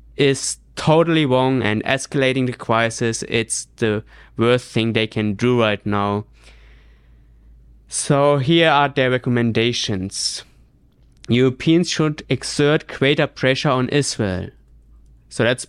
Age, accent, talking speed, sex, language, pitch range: 20-39, German, 115 wpm, male, English, 110-145 Hz